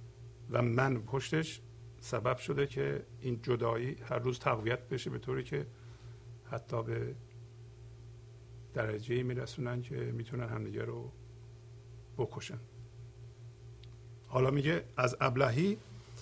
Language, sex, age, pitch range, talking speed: Persian, male, 50-69, 115-140 Hz, 105 wpm